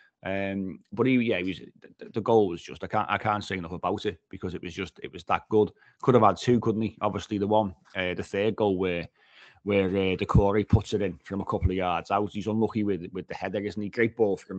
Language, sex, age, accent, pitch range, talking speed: English, male, 30-49, British, 95-105 Hz, 265 wpm